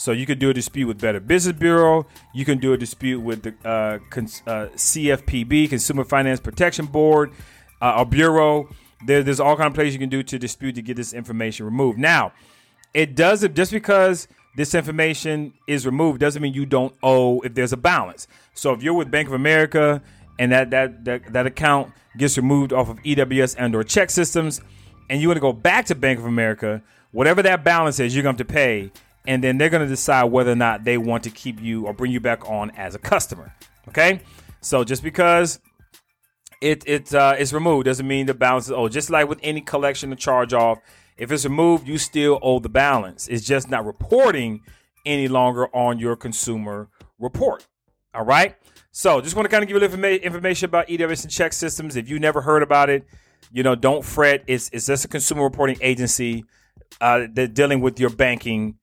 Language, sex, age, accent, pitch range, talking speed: English, male, 30-49, American, 120-150 Hz, 210 wpm